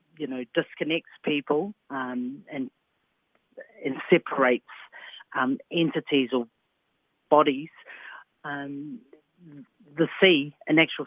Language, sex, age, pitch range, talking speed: English, female, 40-59, 135-160 Hz, 90 wpm